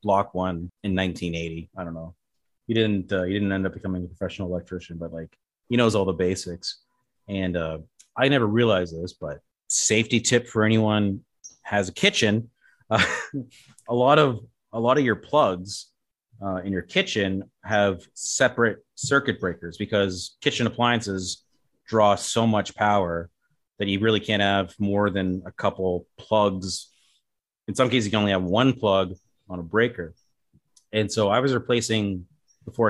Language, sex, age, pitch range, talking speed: English, male, 30-49, 95-115 Hz, 165 wpm